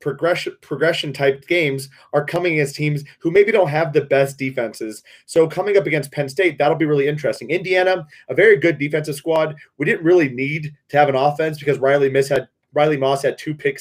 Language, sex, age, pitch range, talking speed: English, male, 30-49, 140-165 Hz, 205 wpm